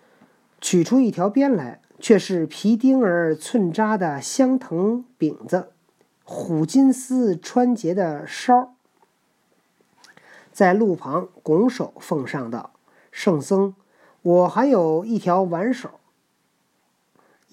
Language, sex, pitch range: Chinese, male, 155-220 Hz